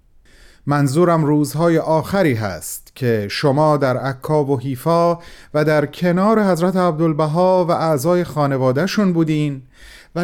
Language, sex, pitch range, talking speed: Persian, male, 135-185 Hz, 115 wpm